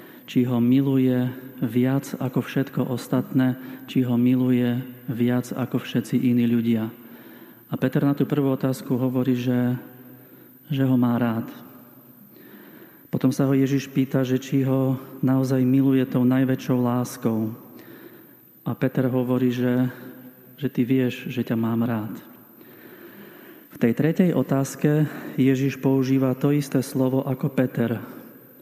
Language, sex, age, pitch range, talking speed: Slovak, male, 40-59, 125-135 Hz, 130 wpm